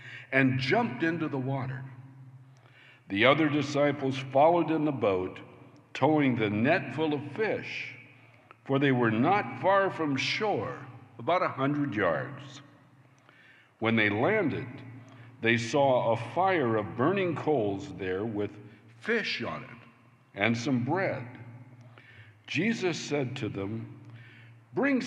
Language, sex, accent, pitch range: English, male, American, 120-140 Hz